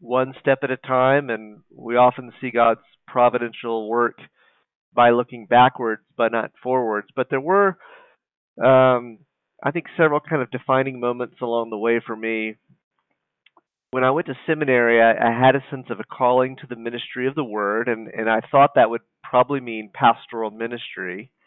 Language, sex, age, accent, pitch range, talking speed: English, male, 40-59, American, 110-130 Hz, 175 wpm